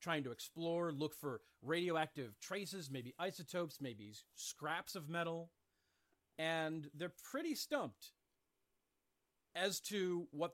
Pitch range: 130-190 Hz